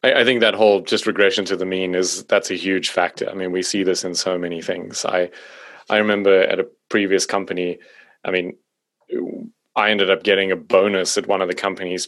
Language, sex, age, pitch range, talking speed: English, male, 30-49, 90-100 Hz, 215 wpm